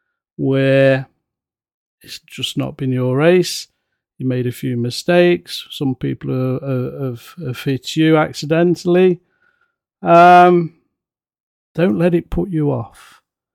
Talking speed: 125 wpm